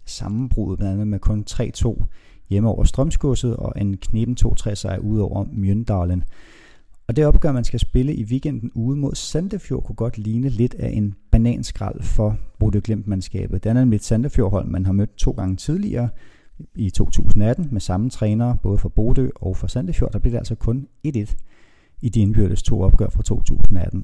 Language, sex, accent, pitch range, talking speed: Danish, male, native, 95-120 Hz, 180 wpm